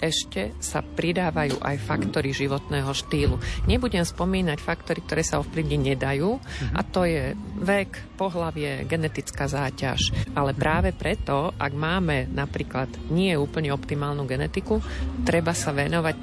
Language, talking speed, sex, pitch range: Slovak, 125 wpm, female, 140-165 Hz